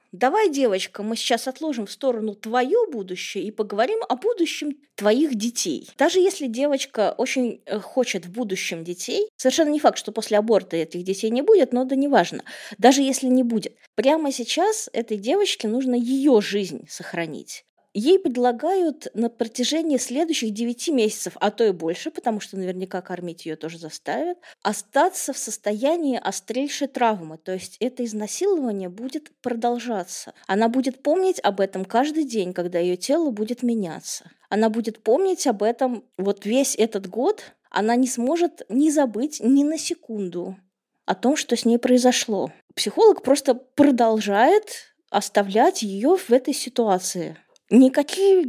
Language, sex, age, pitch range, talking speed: Russian, female, 20-39, 205-285 Hz, 150 wpm